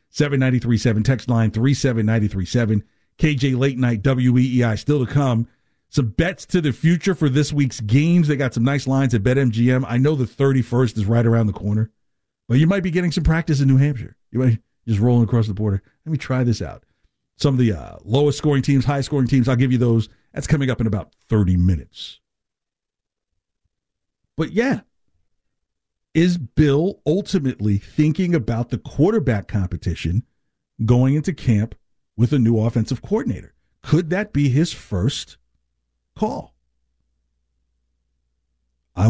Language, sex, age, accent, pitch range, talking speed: English, male, 50-69, American, 90-140 Hz, 160 wpm